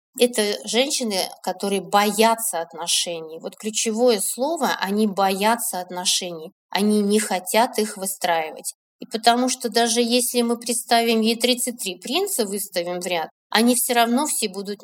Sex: female